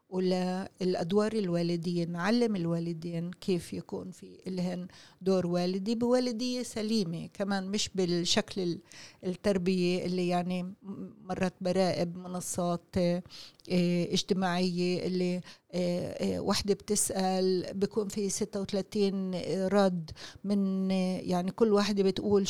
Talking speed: 95 wpm